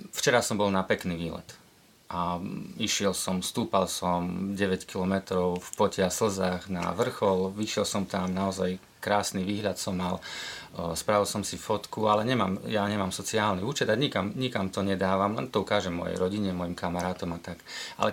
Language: Slovak